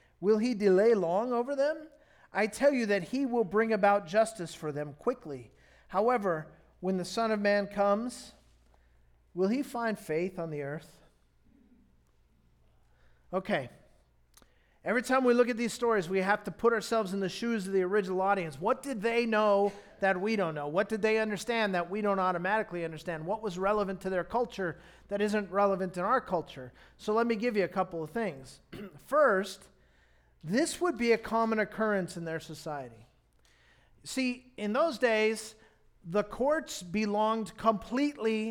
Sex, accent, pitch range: male, American, 175-230 Hz